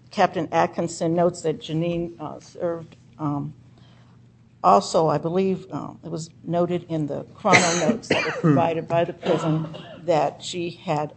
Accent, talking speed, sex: American, 145 wpm, female